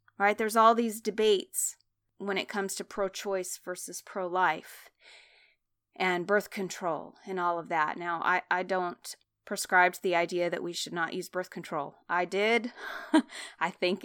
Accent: American